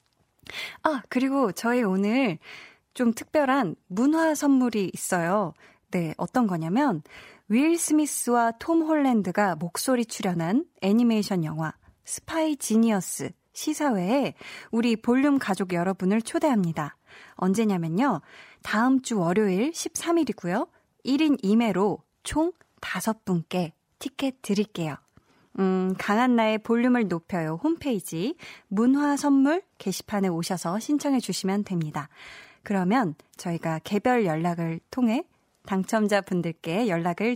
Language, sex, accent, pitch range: Korean, female, native, 180-255 Hz